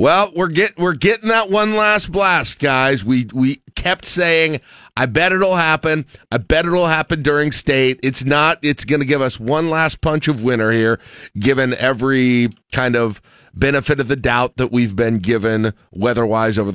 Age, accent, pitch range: 40-59, American, 110-140 Hz